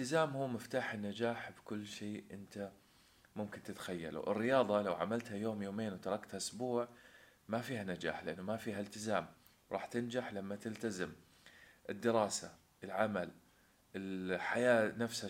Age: 30-49